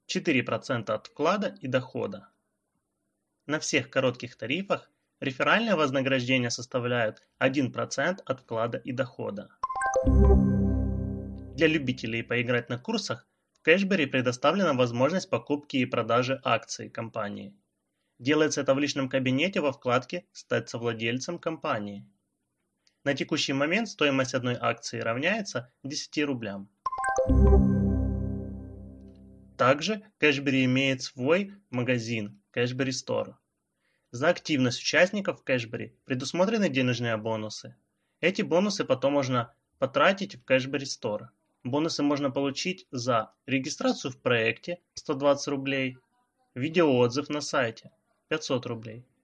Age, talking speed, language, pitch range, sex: 20-39, 105 wpm, Russian, 115-155 Hz, male